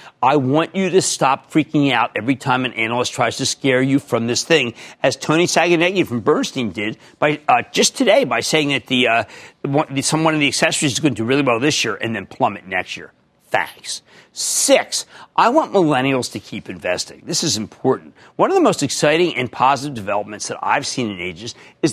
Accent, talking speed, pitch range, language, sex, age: American, 210 wpm, 130-185 Hz, English, male, 50-69